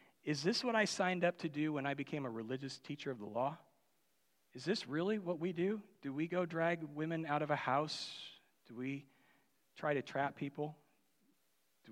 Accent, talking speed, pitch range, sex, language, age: American, 195 wpm, 135-180 Hz, male, English, 40-59